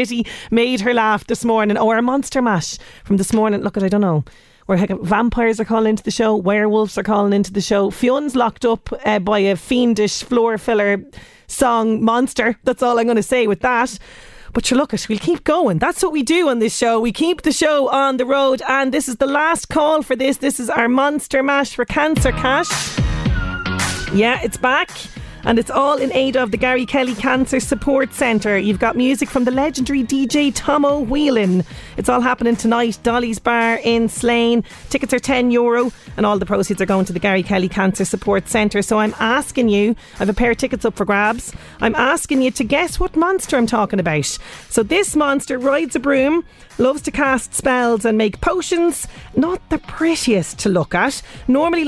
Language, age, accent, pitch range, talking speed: English, 30-49, Irish, 210-270 Hz, 210 wpm